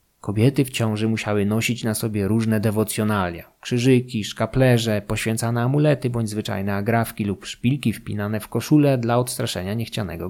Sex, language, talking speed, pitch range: male, Polish, 140 wpm, 110-130 Hz